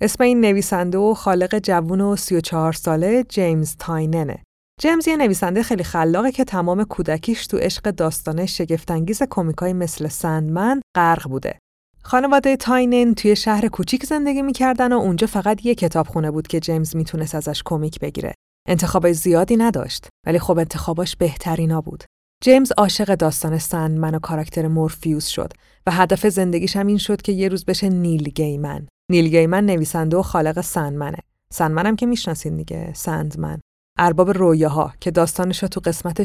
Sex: female